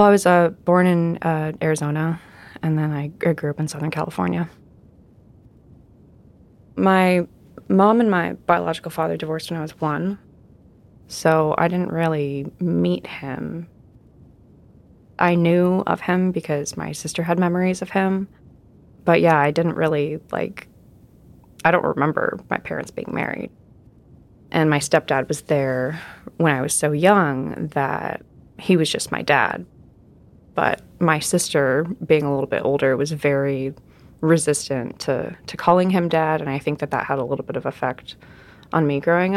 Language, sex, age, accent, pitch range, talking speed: English, female, 20-39, American, 140-175 Hz, 155 wpm